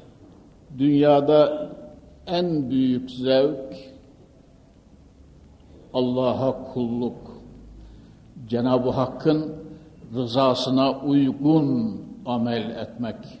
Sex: male